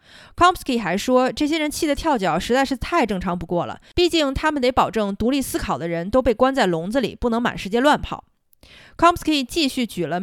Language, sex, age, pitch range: Chinese, female, 20-39, 185-255 Hz